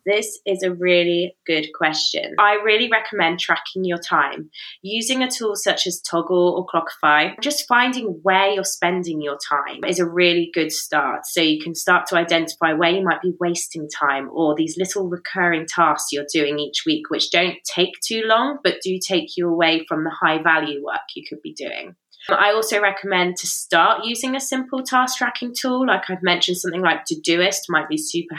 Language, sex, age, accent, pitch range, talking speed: English, female, 20-39, British, 165-210 Hz, 195 wpm